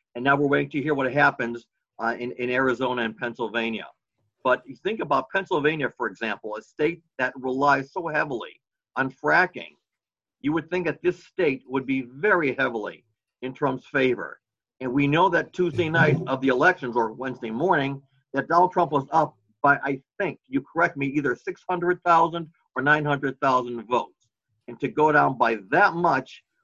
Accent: American